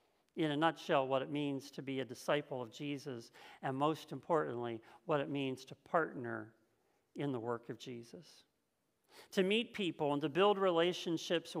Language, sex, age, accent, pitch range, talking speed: English, male, 50-69, American, 160-230 Hz, 165 wpm